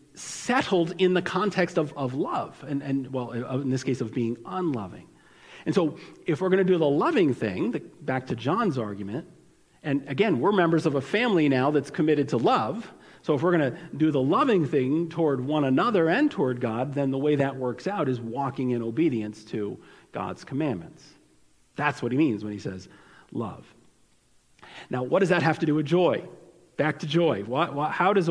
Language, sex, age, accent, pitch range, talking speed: English, male, 40-59, American, 130-175 Hz, 200 wpm